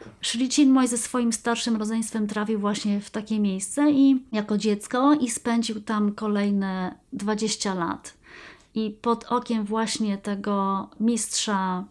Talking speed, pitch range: 130 wpm, 205-230 Hz